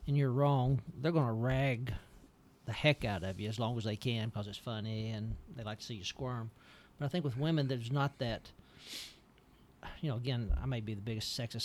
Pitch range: 110-135 Hz